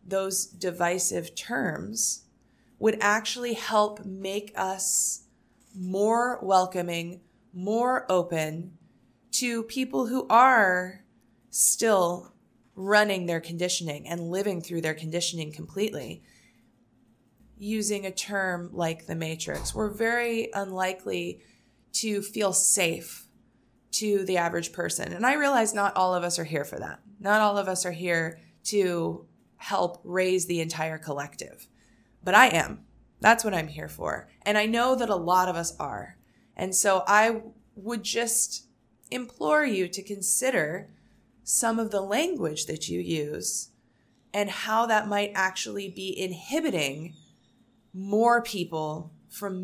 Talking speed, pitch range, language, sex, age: 130 wpm, 170-215 Hz, English, female, 20-39